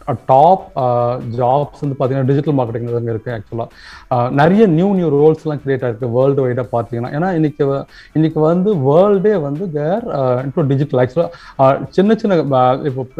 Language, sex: Tamil, male